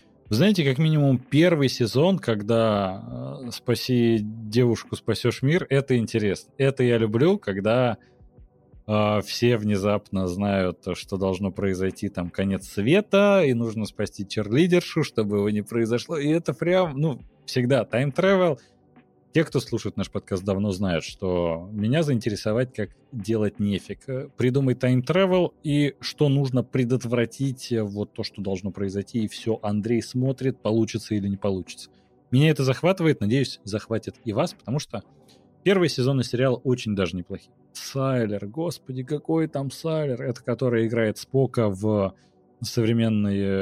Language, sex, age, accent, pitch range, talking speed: Russian, male, 30-49, native, 100-135 Hz, 135 wpm